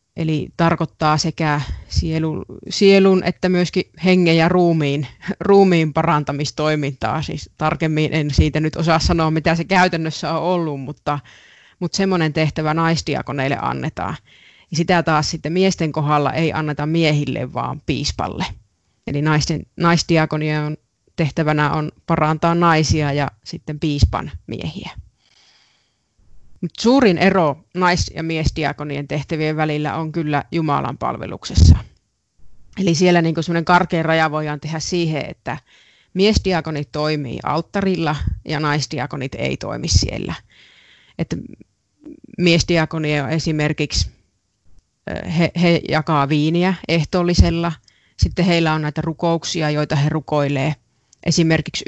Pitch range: 150-170 Hz